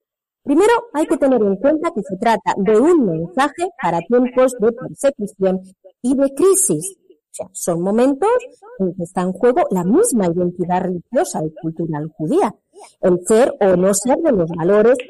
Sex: female